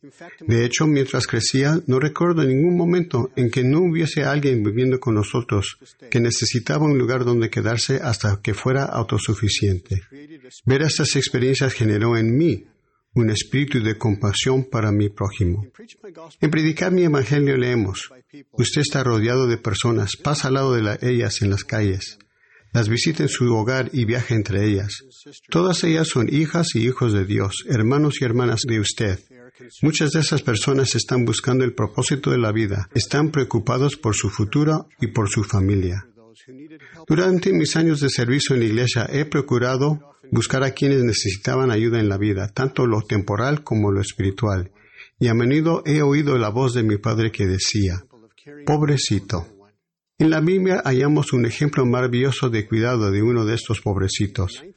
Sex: male